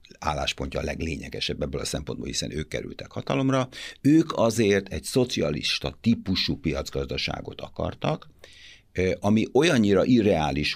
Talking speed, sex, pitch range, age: 110 wpm, male, 75-100 Hz, 60-79